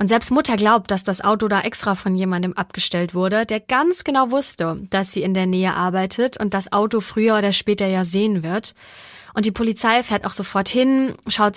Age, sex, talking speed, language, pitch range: 30-49, female, 210 wpm, German, 195-225 Hz